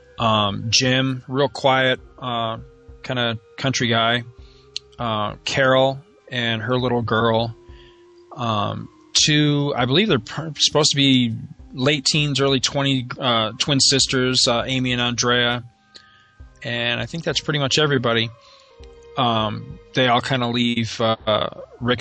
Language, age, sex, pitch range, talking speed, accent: English, 20-39, male, 110-130 Hz, 135 wpm, American